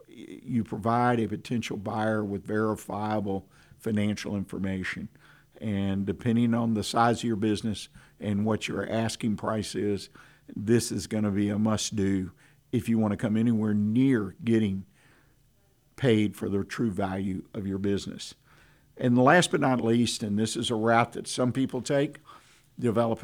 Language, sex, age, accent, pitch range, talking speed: English, male, 50-69, American, 105-120 Hz, 155 wpm